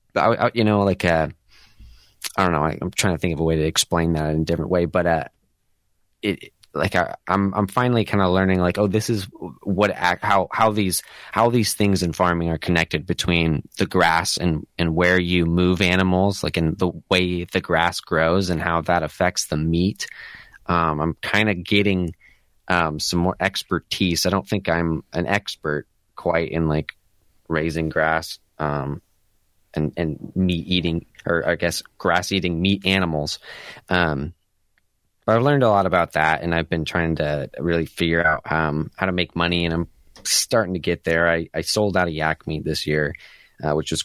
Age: 20-39